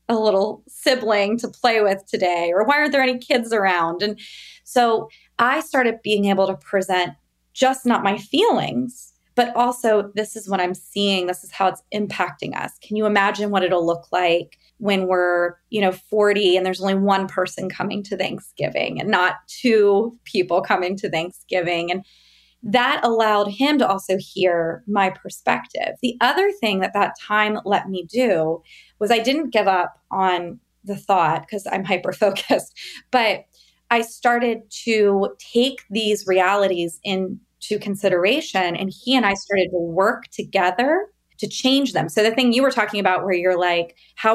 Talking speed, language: 170 wpm, English